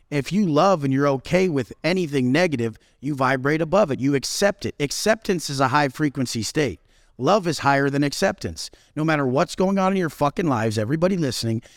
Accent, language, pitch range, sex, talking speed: American, English, 130-165 Hz, male, 195 wpm